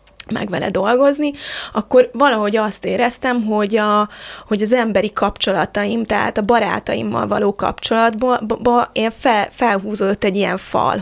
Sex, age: female, 20-39